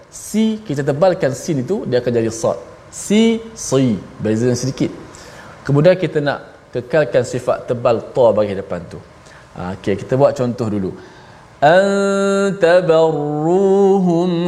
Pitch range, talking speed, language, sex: 125-170 Hz, 120 wpm, Malayalam, male